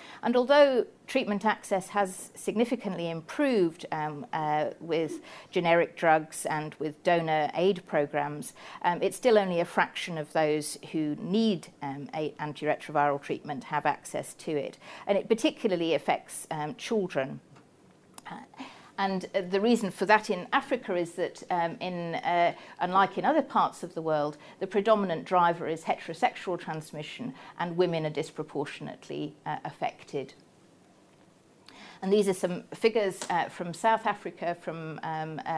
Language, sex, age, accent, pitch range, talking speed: English, female, 50-69, British, 160-215 Hz, 140 wpm